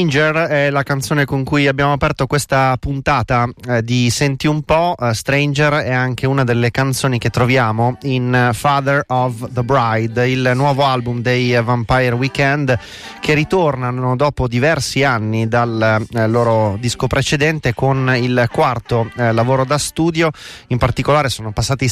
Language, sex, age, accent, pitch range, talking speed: Italian, male, 30-49, native, 115-140 Hz, 160 wpm